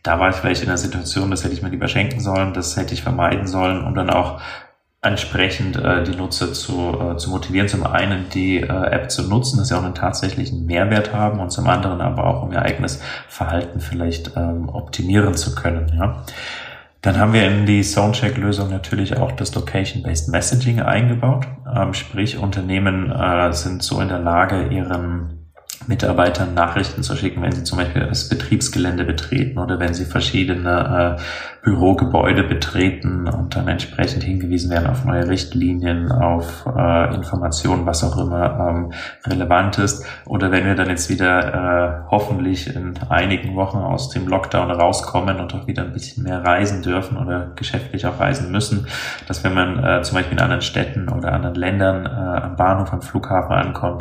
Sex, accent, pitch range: male, German, 90-115 Hz